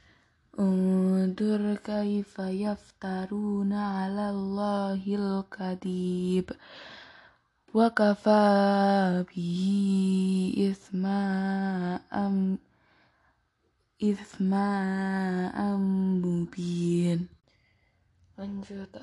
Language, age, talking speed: Indonesian, 20-39, 40 wpm